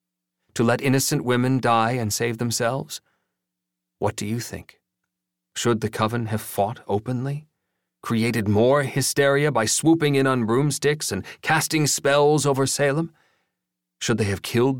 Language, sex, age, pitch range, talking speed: English, male, 40-59, 90-140 Hz, 140 wpm